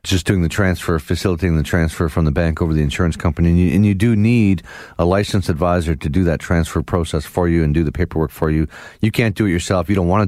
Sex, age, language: male, 40-59, English